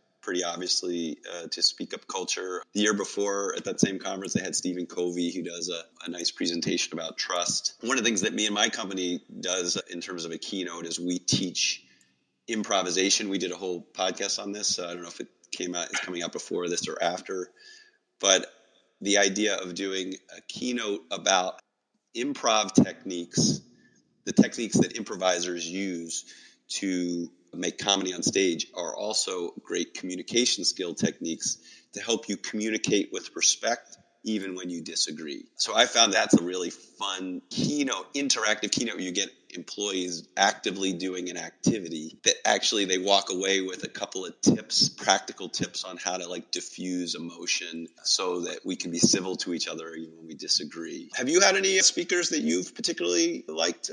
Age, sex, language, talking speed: 30-49, male, English, 175 wpm